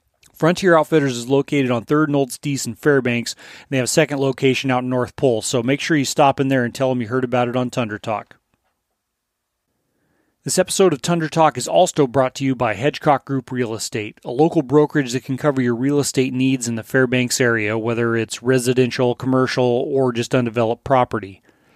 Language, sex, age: English, male, 30-49